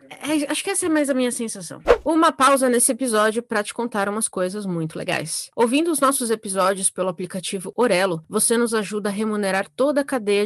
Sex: female